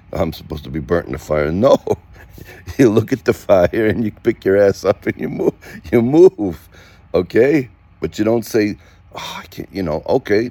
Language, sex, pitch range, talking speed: English, male, 80-100 Hz, 205 wpm